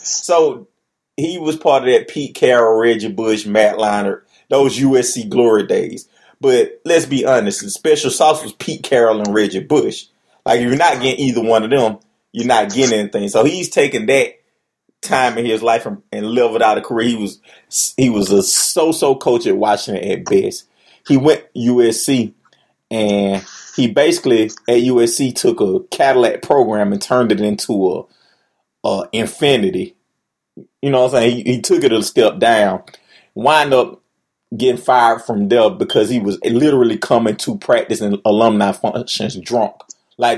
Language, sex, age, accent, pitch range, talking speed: English, male, 30-49, American, 105-135 Hz, 170 wpm